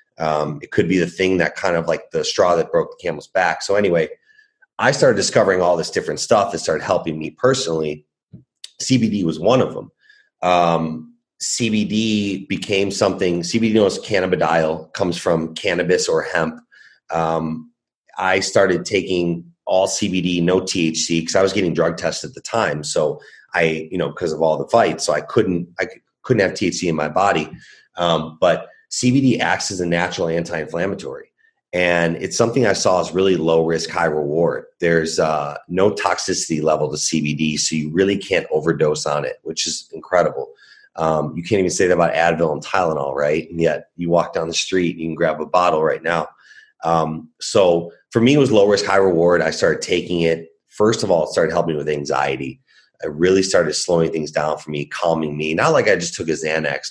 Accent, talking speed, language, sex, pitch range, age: American, 195 wpm, English, male, 80-110 Hz, 30-49